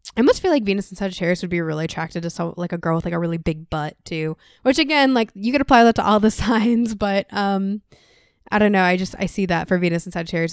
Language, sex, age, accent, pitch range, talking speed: English, female, 10-29, American, 175-225 Hz, 260 wpm